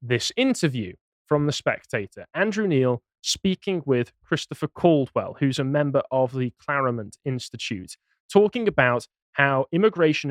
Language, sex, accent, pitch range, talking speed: English, male, British, 125-155 Hz, 130 wpm